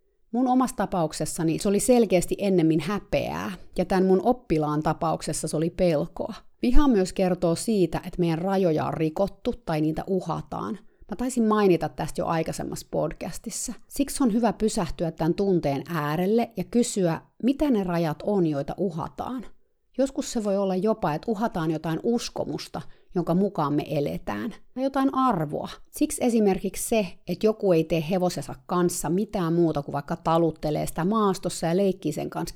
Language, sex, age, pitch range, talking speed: Finnish, female, 30-49, 165-215 Hz, 160 wpm